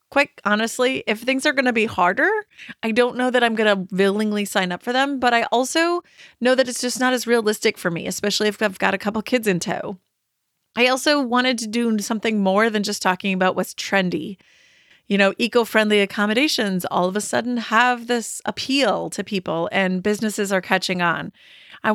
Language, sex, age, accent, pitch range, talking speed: English, female, 30-49, American, 195-240 Hz, 200 wpm